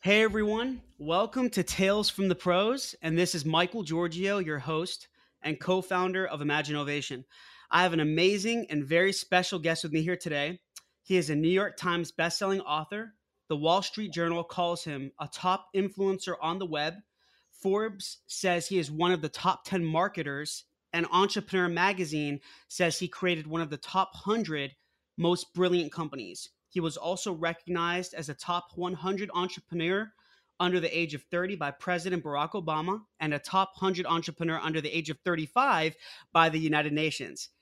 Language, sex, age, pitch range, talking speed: English, male, 20-39, 160-190 Hz, 170 wpm